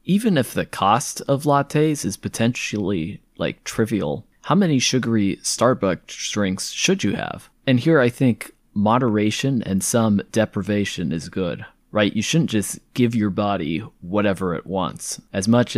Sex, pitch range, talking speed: male, 95-120 Hz, 150 wpm